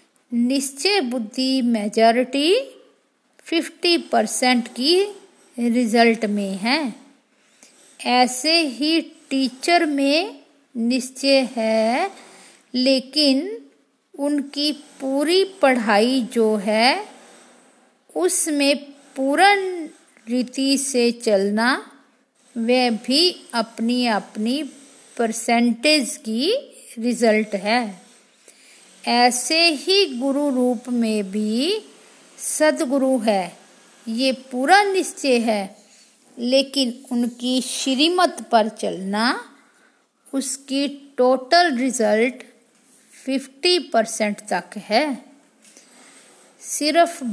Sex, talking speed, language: female, 75 wpm, Hindi